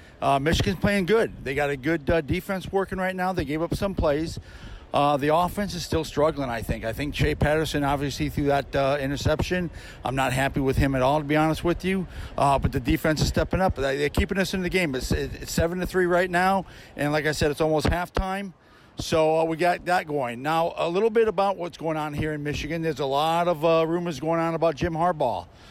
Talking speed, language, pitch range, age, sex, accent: 240 wpm, English, 140-175 Hz, 50-69, male, American